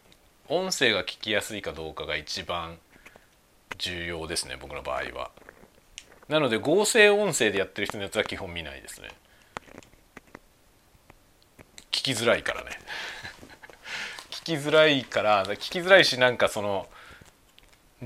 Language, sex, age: Japanese, male, 40-59